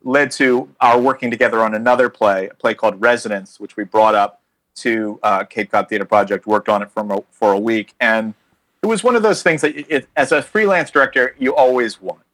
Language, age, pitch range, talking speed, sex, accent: English, 40-59, 105-130 Hz, 225 wpm, male, American